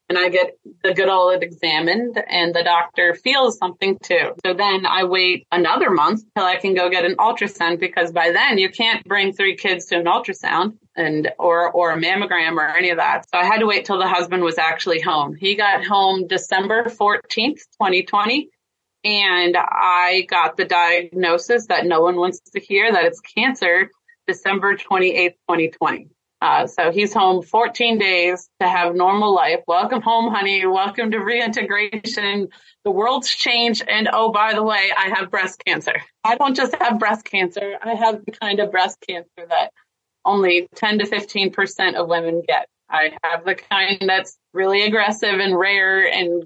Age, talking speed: 30-49, 180 wpm